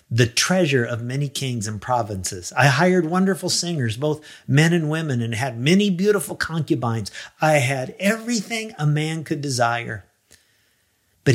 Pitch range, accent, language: 115-165 Hz, American, English